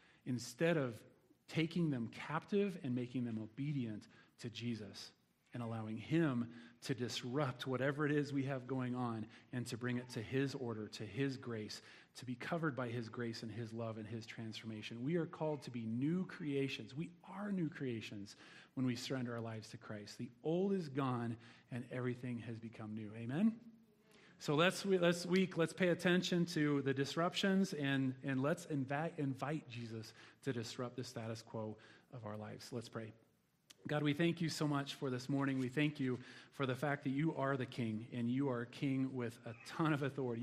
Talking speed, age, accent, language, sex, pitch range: 190 wpm, 40-59, American, English, male, 120-150 Hz